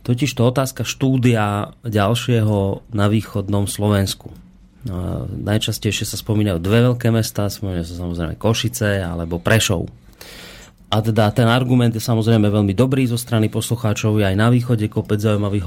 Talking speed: 140 wpm